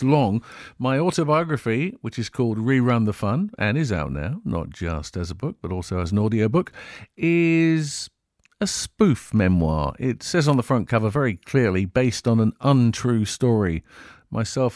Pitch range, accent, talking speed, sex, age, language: 100-120 Hz, British, 170 wpm, male, 50-69, English